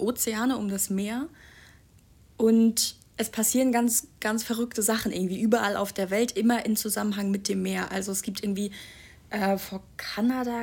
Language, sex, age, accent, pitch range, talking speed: German, female, 20-39, German, 190-225 Hz, 165 wpm